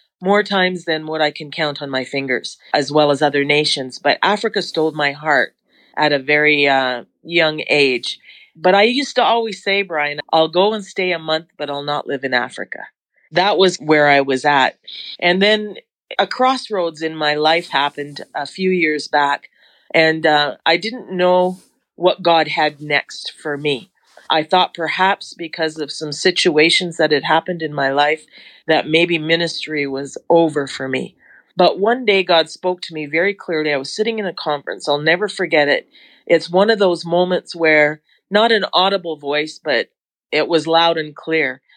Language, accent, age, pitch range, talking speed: English, American, 40-59, 150-195 Hz, 185 wpm